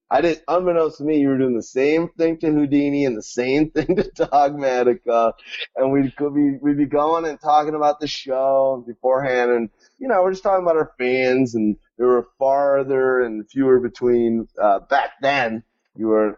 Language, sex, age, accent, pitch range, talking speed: English, male, 30-49, American, 125-175 Hz, 190 wpm